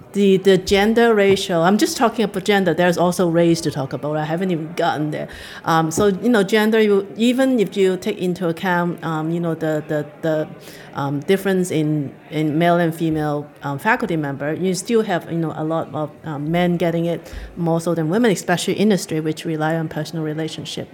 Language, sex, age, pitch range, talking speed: English, female, 30-49, 165-225 Hz, 205 wpm